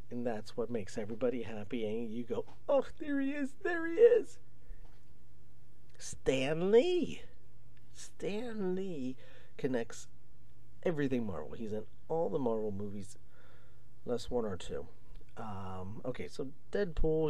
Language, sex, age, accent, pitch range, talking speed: English, male, 50-69, American, 105-150 Hz, 130 wpm